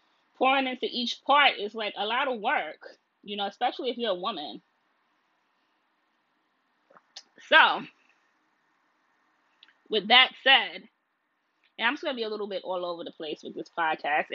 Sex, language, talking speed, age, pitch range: female, English, 155 wpm, 20-39, 200-245 Hz